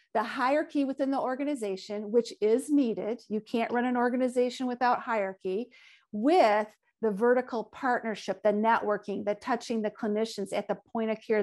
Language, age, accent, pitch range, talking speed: English, 50-69, American, 210-255 Hz, 160 wpm